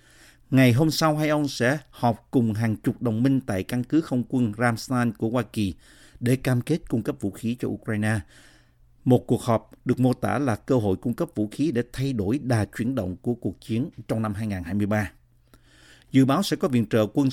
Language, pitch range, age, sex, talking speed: Vietnamese, 110-140 Hz, 50-69, male, 215 wpm